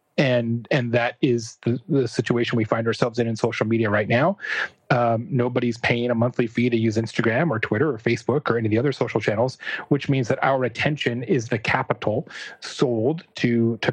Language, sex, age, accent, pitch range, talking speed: English, male, 30-49, American, 115-145 Hz, 200 wpm